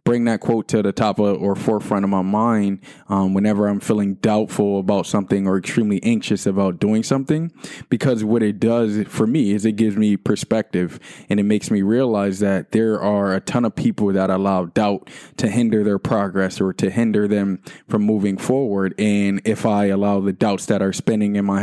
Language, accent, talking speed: English, American, 205 wpm